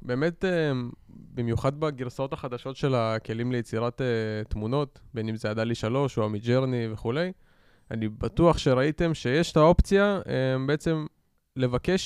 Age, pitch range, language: 20-39, 120-155 Hz, Hebrew